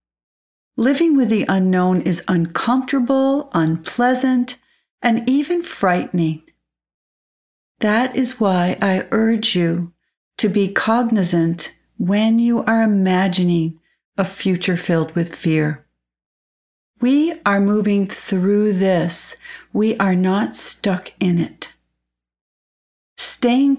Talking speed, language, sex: 100 wpm, English, female